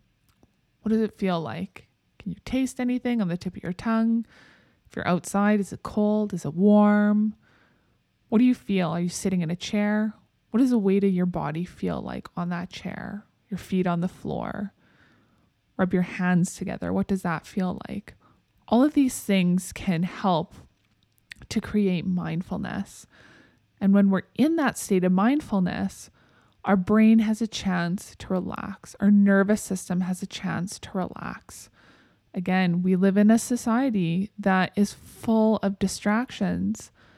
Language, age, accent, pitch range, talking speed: English, 20-39, American, 185-220 Hz, 165 wpm